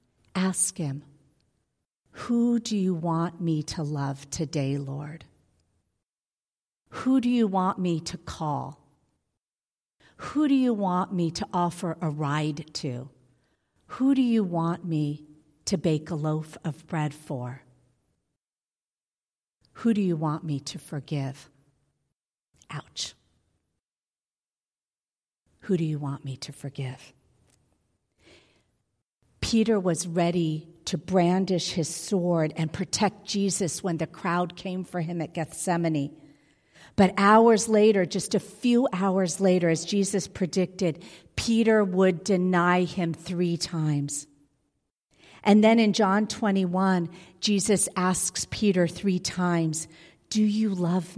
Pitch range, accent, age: 150-195 Hz, American, 50-69